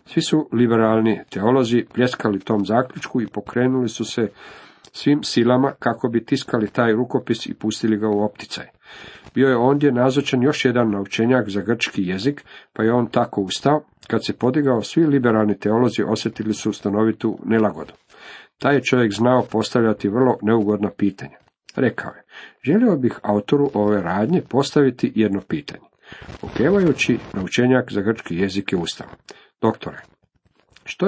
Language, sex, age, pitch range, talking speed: Croatian, male, 50-69, 105-130 Hz, 145 wpm